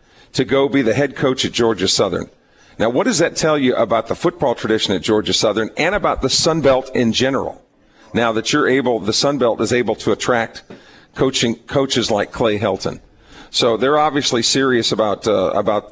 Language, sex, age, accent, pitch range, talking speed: English, male, 50-69, American, 110-135 Hz, 190 wpm